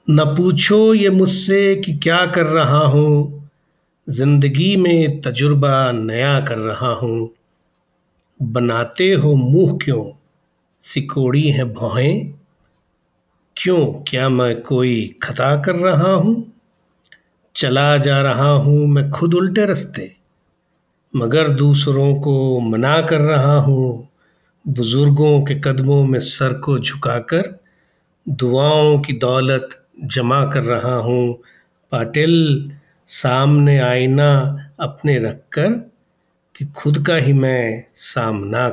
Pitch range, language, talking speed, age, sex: 130-160 Hz, Hindi, 110 wpm, 50-69, male